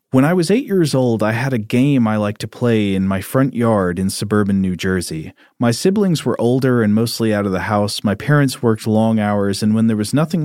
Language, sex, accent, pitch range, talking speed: English, male, American, 100-135 Hz, 240 wpm